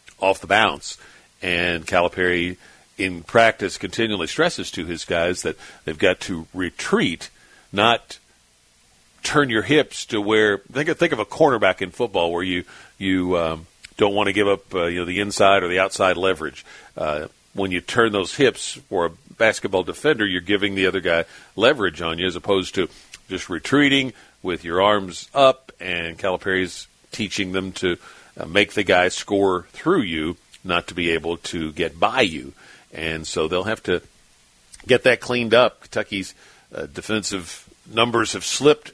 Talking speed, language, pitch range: 175 wpm, English, 85-110 Hz